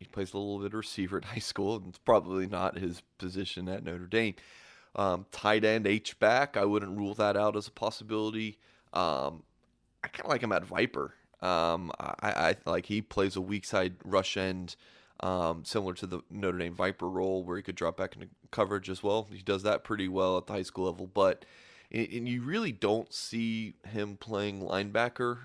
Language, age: English, 30-49